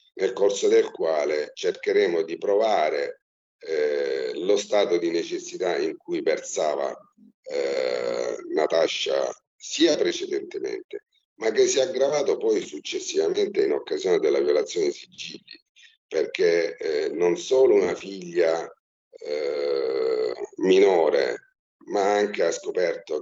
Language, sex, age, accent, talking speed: Italian, male, 50-69, native, 115 wpm